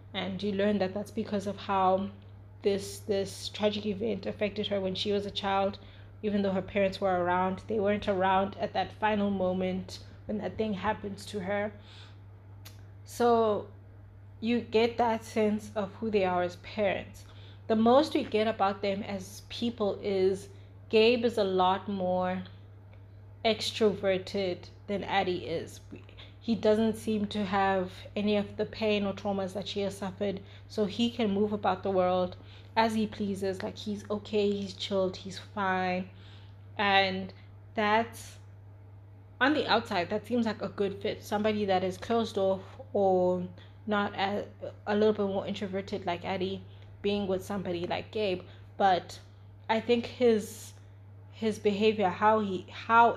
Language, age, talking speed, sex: English, 20-39, 155 wpm, female